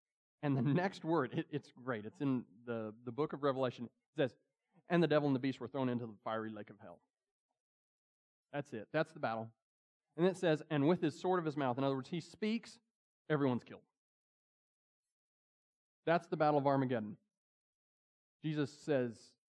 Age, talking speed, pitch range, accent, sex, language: 40-59, 180 wpm, 135-205 Hz, American, male, English